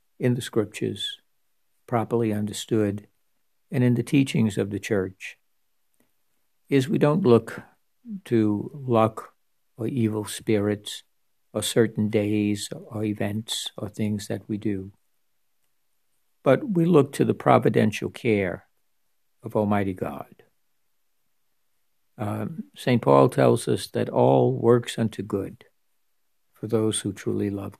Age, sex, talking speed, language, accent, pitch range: 60-79, male, 120 wpm, English, American, 105-120 Hz